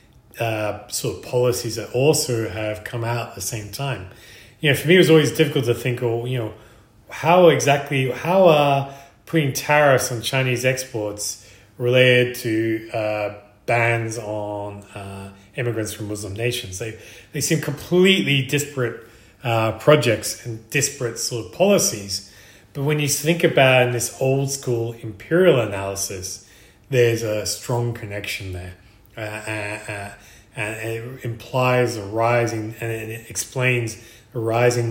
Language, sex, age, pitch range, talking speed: English, male, 30-49, 105-135 Hz, 150 wpm